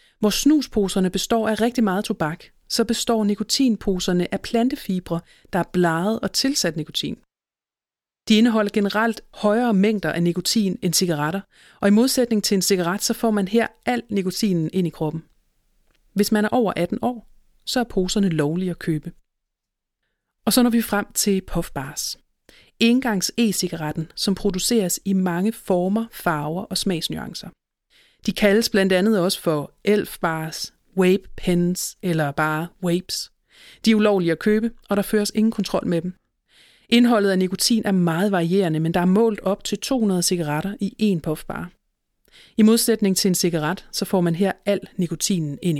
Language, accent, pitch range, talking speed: Danish, native, 170-215 Hz, 165 wpm